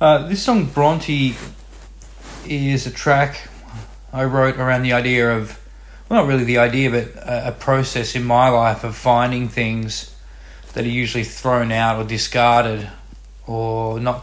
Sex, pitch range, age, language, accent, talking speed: male, 110-125 Hz, 20-39, English, Australian, 155 wpm